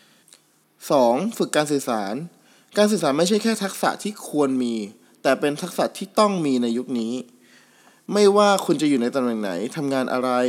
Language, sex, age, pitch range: Thai, male, 20-39, 125-175 Hz